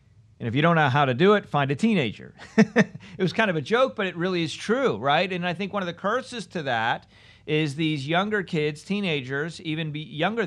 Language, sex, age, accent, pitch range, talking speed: English, male, 50-69, American, 135-195 Hz, 230 wpm